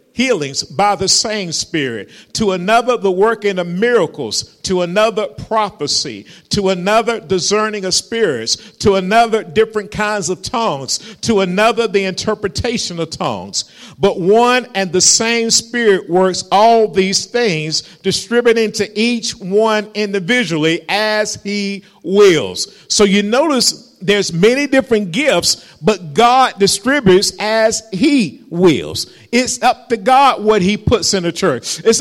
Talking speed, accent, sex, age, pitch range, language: 135 wpm, American, male, 50-69, 195-250 Hz, English